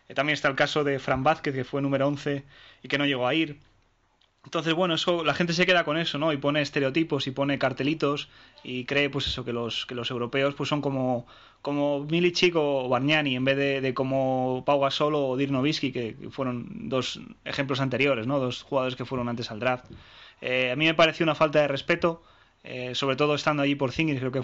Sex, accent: male, Spanish